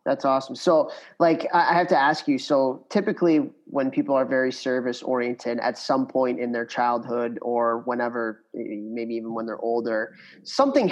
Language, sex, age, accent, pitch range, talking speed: English, male, 30-49, American, 120-140 Hz, 170 wpm